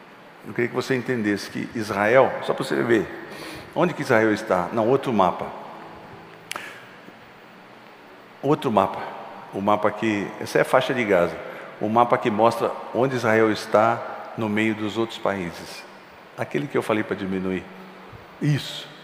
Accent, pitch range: Brazilian, 110-140 Hz